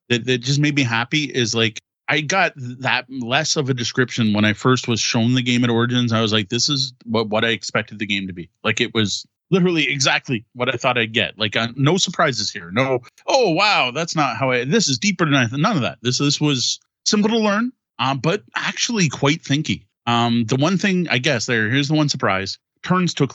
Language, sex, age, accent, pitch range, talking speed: English, male, 30-49, American, 110-150 Hz, 230 wpm